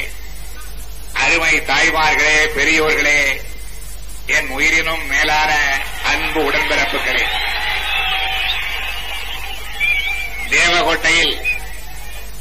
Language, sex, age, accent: Tamil, male, 60-79, native